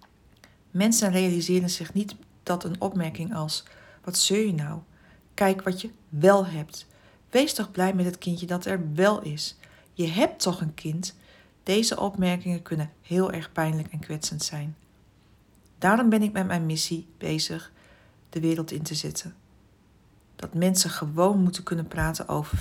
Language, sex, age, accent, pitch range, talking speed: Dutch, female, 60-79, Dutch, 155-185 Hz, 160 wpm